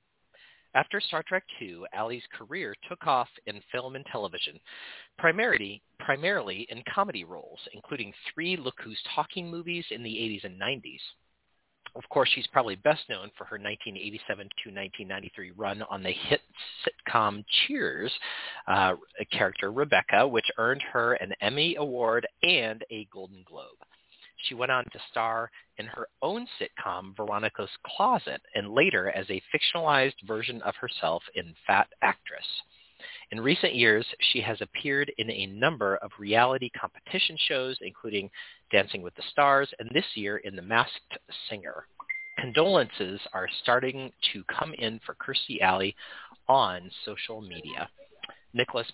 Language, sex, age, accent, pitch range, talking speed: English, male, 40-59, American, 105-155 Hz, 145 wpm